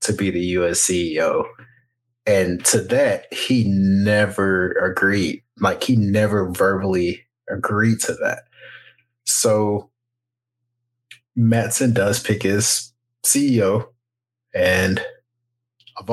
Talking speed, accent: 95 wpm, American